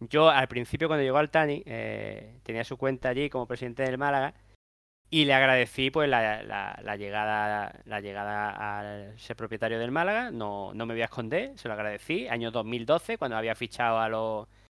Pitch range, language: 110-135 Hz, Spanish